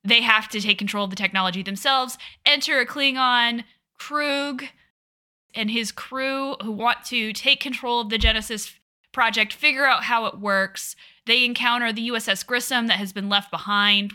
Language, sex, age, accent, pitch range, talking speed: English, female, 10-29, American, 200-260 Hz, 170 wpm